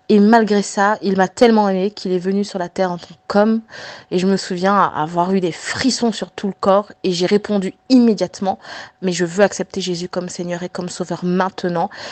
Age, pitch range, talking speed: 20-39, 175-200 Hz, 215 wpm